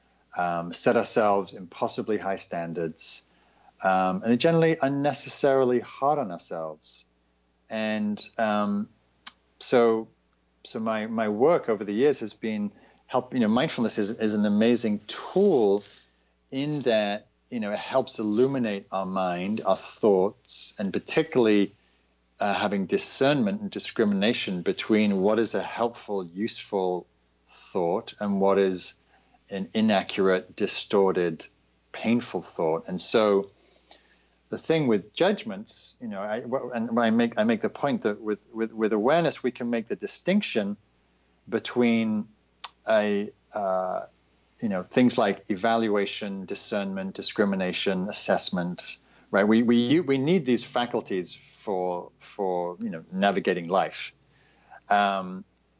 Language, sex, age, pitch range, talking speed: English, male, 30-49, 90-120 Hz, 125 wpm